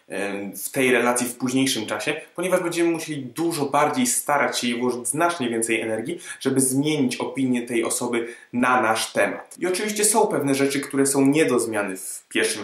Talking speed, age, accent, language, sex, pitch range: 180 wpm, 20-39, native, Polish, male, 115-140 Hz